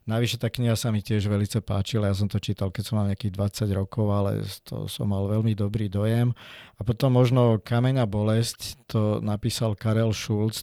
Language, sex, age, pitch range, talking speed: Slovak, male, 50-69, 105-115 Hz, 190 wpm